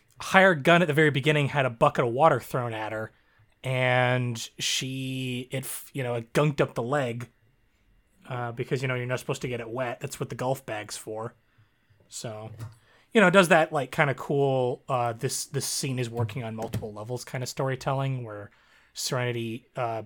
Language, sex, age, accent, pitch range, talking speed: English, male, 30-49, American, 115-145 Hz, 195 wpm